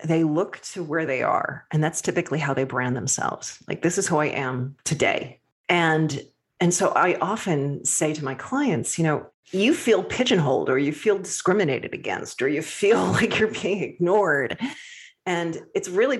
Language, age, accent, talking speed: English, 40-59, American, 180 wpm